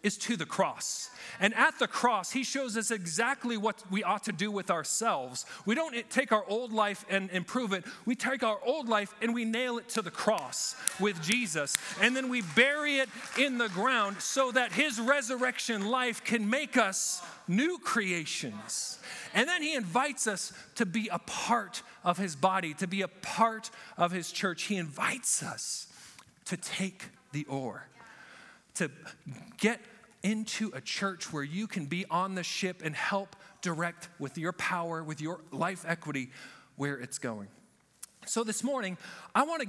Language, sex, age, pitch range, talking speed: English, male, 40-59, 170-230 Hz, 175 wpm